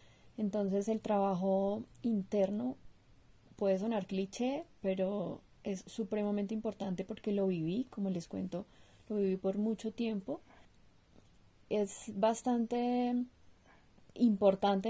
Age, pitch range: 30-49, 185-210 Hz